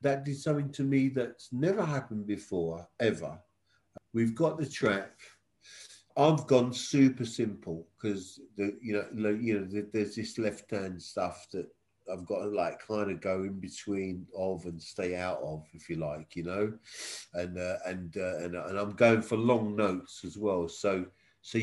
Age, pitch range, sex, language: 50-69, 95-140 Hz, male, English